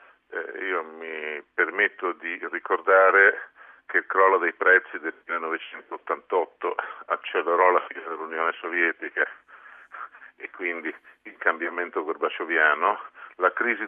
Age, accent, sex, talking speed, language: 50-69, native, male, 105 wpm, Italian